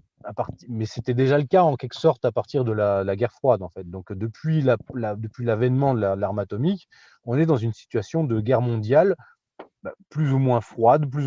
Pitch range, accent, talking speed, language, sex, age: 100-135 Hz, French, 230 wpm, French, male, 30-49